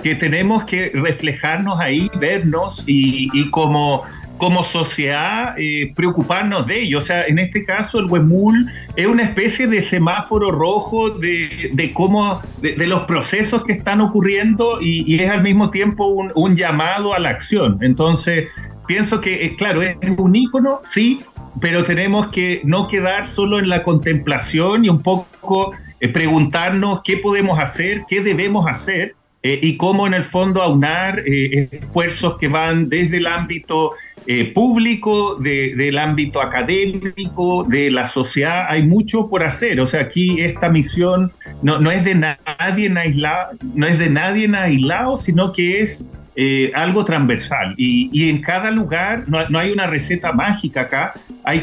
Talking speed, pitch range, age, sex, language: 165 wpm, 150-195 Hz, 40-59, male, Spanish